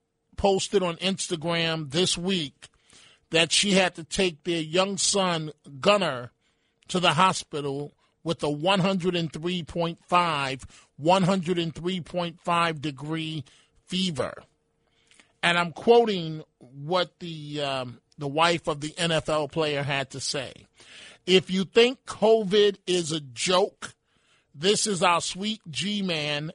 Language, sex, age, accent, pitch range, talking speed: English, male, 40-59, American, 160-195 Hz, 115 wpm